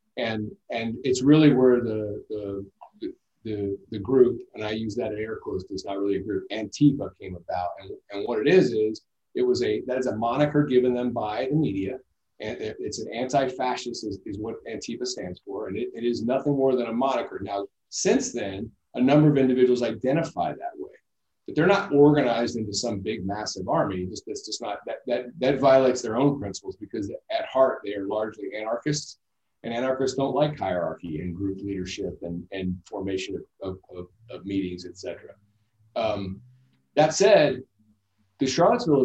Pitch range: 105-140 Hz